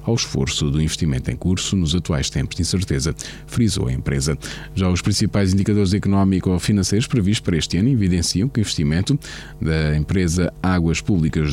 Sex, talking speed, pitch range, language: male, 160 wpm, 80-110 Hz, Portuguese